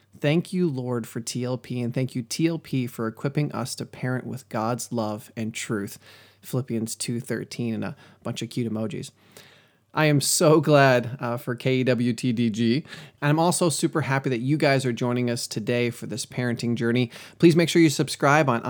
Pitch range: 120-150 Hz